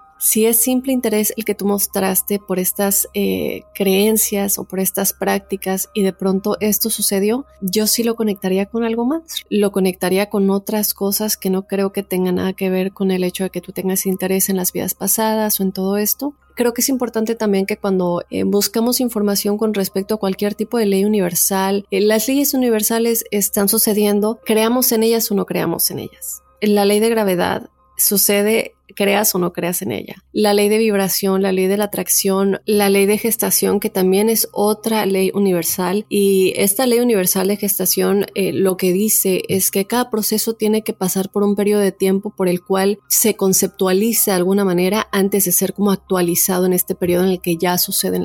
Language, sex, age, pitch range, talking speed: Spanish, female, 30-49, 190-215 Hz, 200 wpm